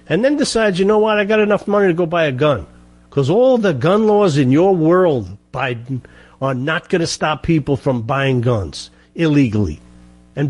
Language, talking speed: English, 200 wpm